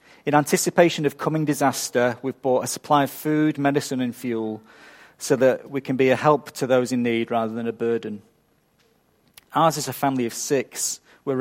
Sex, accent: male, British